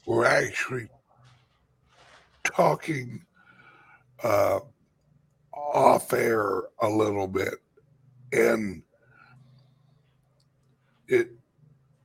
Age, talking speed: 60-79, 55 wpm